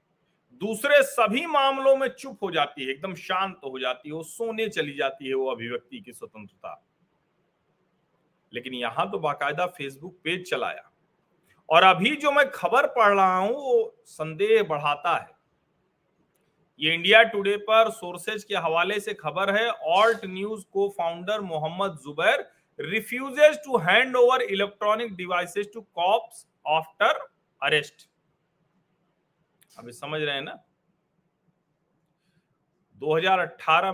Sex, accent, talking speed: male, native, 125 wpm